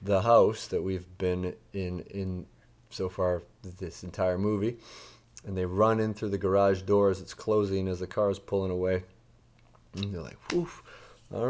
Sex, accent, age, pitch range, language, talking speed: male, American, 30-49, 90-110 Hz, English, 170 wpm